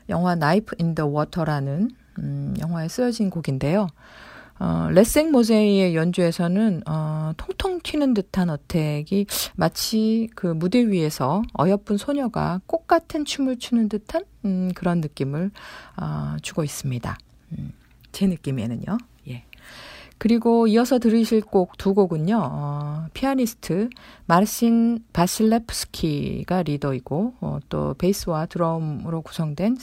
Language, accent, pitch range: Korean, native, 145-220 Hz